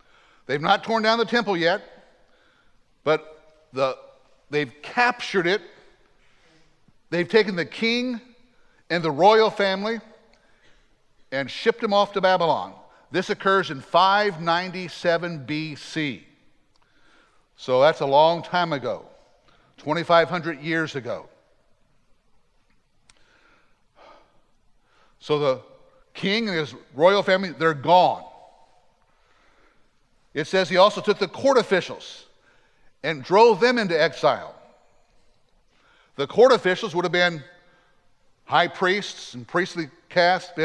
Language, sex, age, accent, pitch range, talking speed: English, male, 50-69, American, 160-205 Hz, 110 wpm